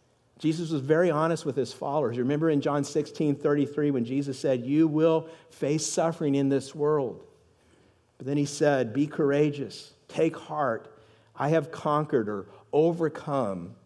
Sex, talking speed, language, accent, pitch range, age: male, 150 wpm, English, American, 130-155 Hz, 50-69